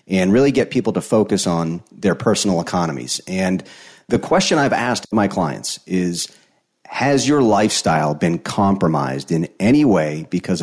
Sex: male